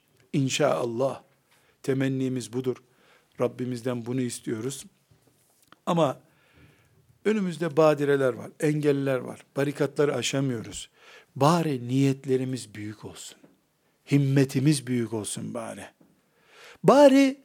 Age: 60-79